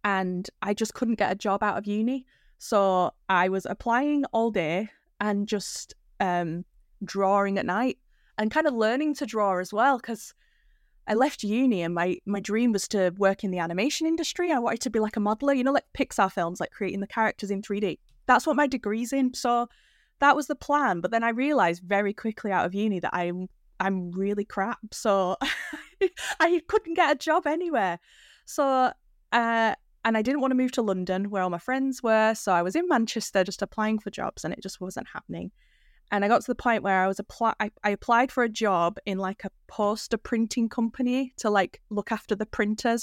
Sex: female